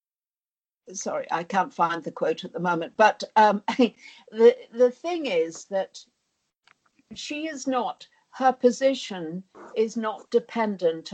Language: Italian